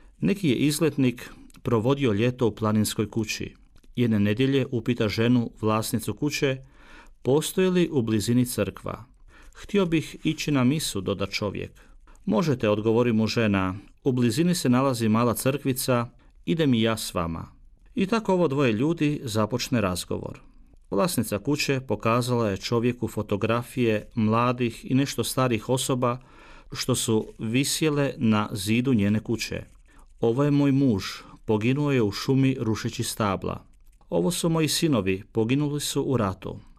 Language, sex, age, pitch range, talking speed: Croatian, male, 40-59, 105-135 Hz, 135 wpm